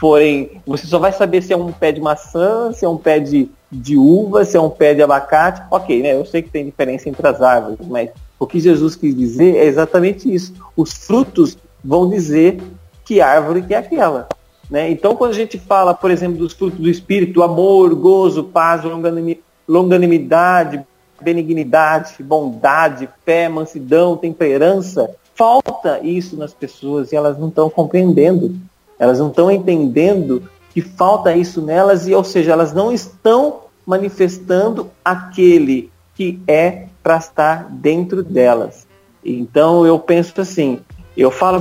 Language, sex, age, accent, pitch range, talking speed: Portuguese, male, 40-59, Brazilian, 150-185 Hz, 155 wpm